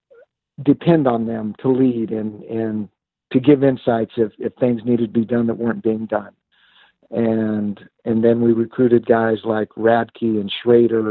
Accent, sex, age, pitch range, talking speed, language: American, male, 50-69, 110-120 Hz, 165 wpm, English